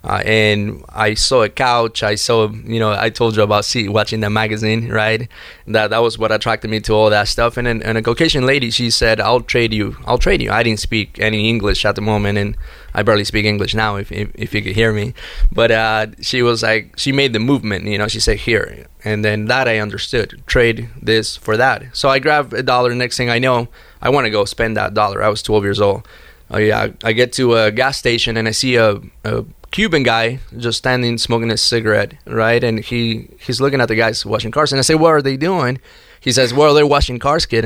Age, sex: 20-39, male